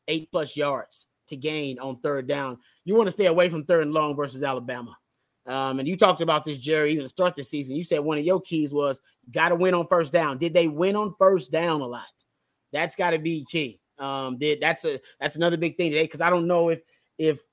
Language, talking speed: English, 245 wpm